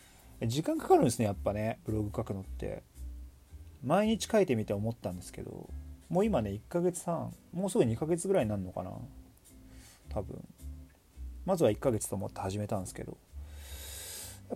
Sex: male